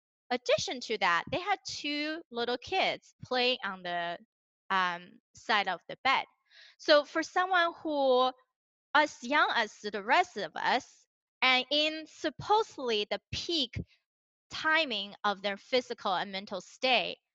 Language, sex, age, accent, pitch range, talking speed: English, female, 20-39, American, 205-290 Hz, 135 wpm